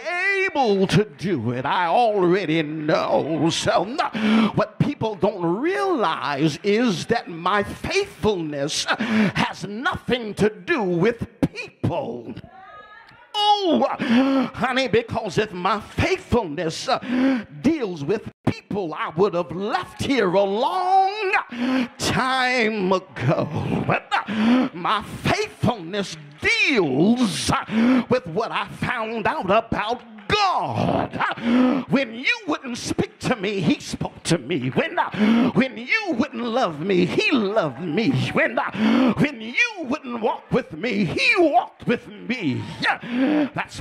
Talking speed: 120 wpm